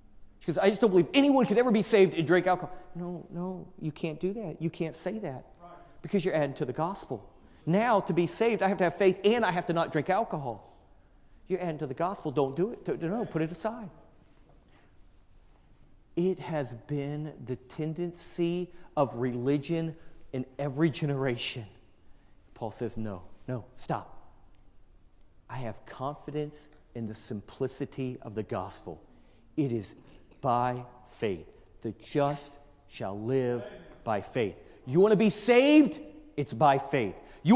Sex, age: male, 40-59